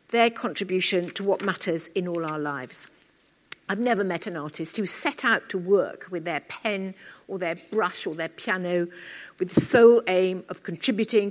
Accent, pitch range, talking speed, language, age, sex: British, 175-230 Hz, 180 wpm, English, 60-79, female